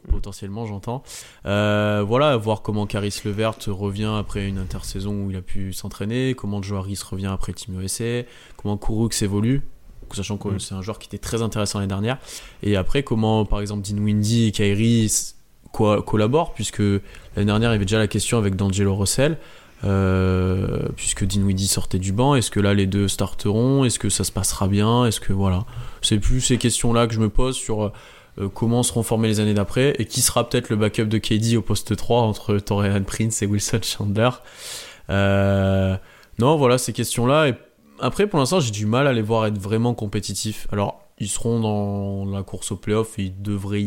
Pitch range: 100-115 Hz